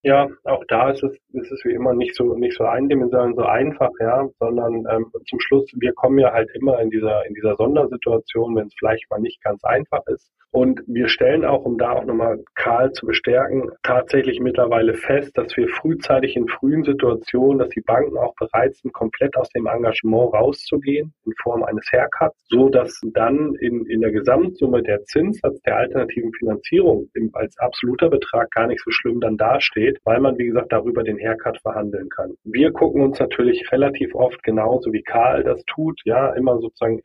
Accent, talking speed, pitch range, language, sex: German, 190 wpm, 115-145 Hz, German, male